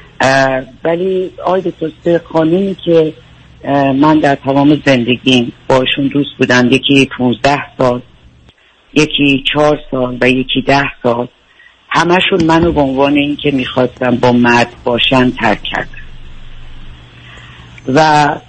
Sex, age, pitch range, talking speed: female, 50-69, 120-150 Hz, 115 wpm